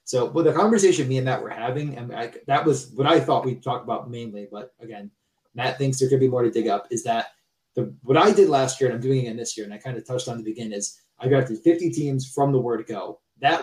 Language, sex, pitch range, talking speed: English, male, 120-155 Hz, 285 wpm